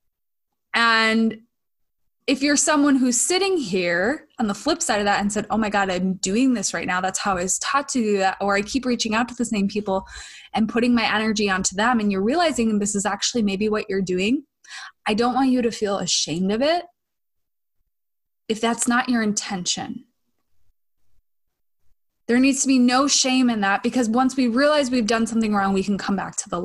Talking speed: 205 wpm